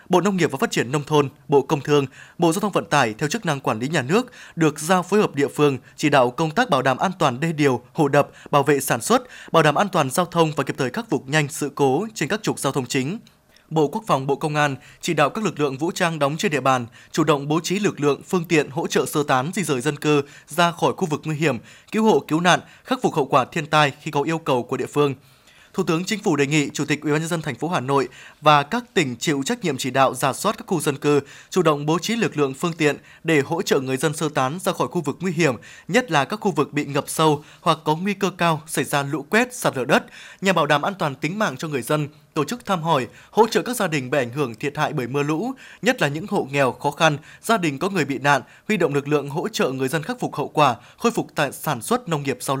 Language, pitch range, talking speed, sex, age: Vietnamese, 140-175 Hz, 285 wpm, male, 20-39